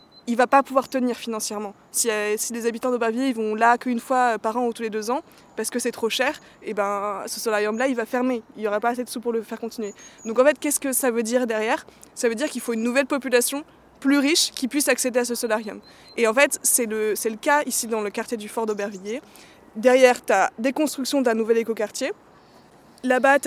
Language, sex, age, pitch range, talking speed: French, female, 20-39, 225-275 Hz, 245 wpm